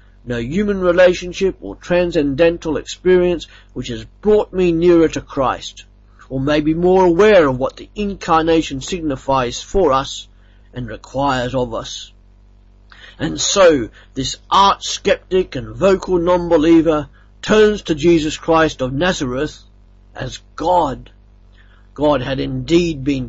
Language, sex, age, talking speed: English, male, 50-69, 125 wpm